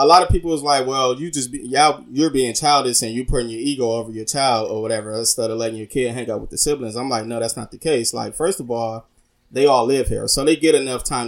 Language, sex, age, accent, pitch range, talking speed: English, male, 20-39, American, 115-135 Hz, 285 wpm